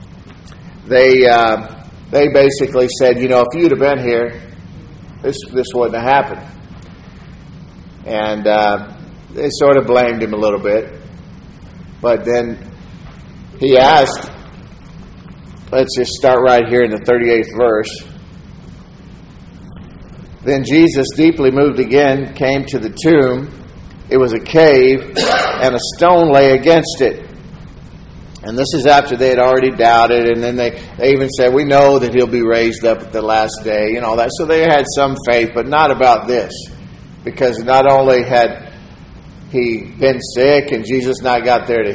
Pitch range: 120-140 Hz